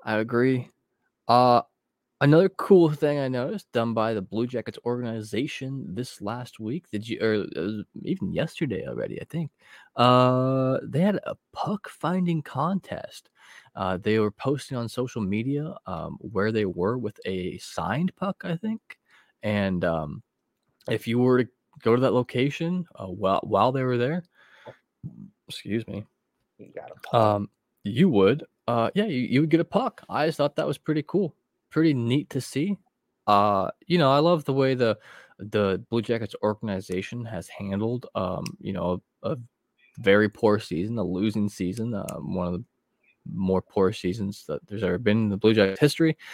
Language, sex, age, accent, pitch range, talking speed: English, male, 20-39, American, 105-155 Hz, 170 wpm